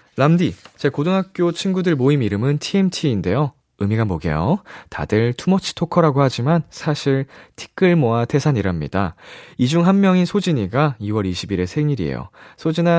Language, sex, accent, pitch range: Korean, male, native, 100-155 Hz